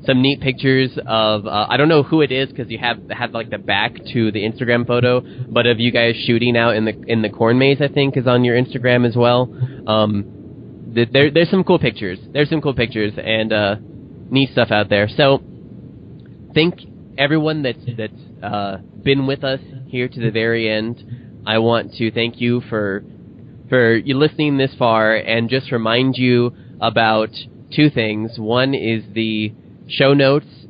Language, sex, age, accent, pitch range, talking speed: English, male, 20-39, American, 115-135 Hz, 190 wpm